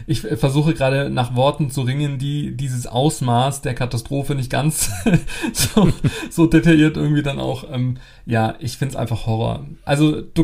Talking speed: 165 wpm